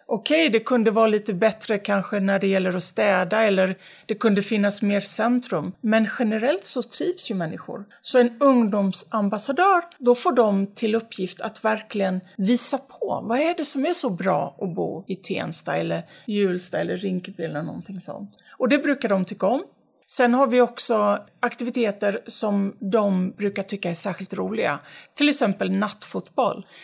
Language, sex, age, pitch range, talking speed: Swedish, female, 30-49, 195-245 Hz, 170 wpm